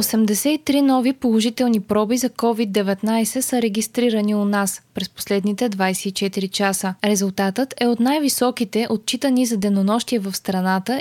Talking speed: 125 wpm